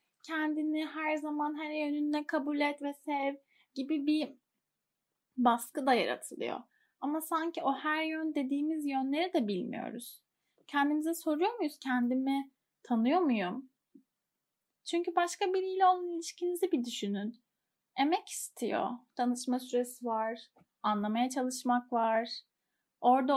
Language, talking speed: Turkish, 115 wpm